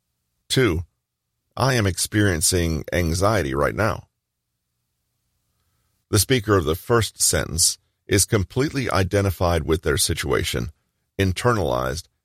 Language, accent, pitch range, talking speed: English, American, 85-110 Hz, 100 wpm